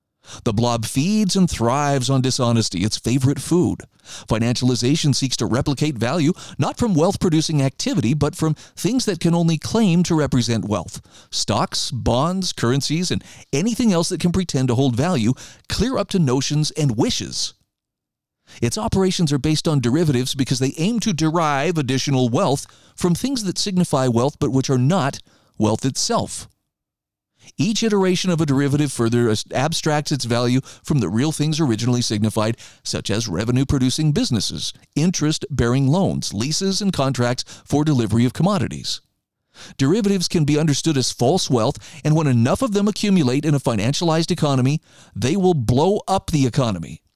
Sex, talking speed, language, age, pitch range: male, 155 wpm, English, 40-59, 125-170 Hz